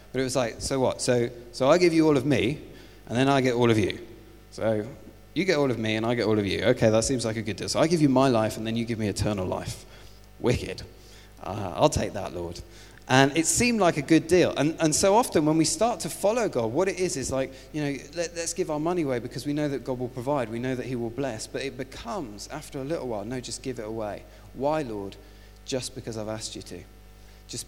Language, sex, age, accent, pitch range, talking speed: English, male, 30-49, British, 105-140 Hz, 265 wpm